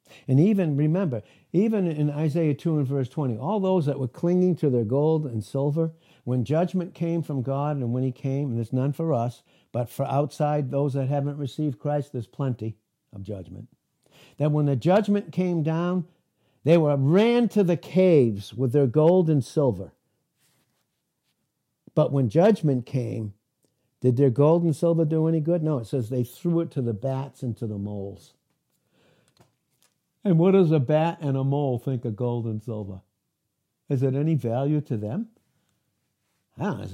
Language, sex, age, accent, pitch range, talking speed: English, male, 60-79, American, 120-160 Hz, 175 wpm